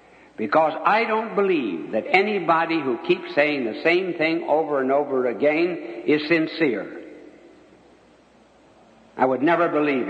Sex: male